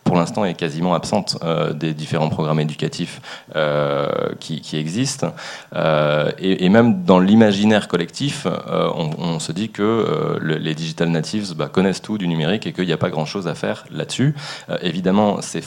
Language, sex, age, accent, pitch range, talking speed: French, male, 30-49, French, 80-105 Hz, 190 wpm